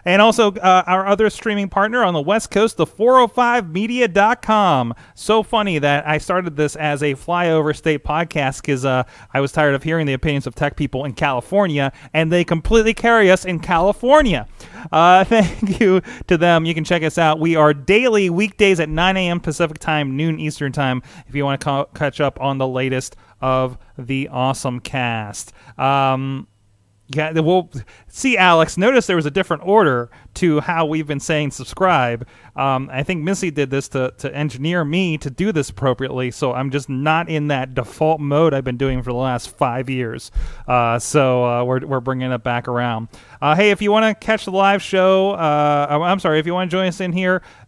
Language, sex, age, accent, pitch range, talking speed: English, male, 30-49, American, 135-180 Hz, 200 wpm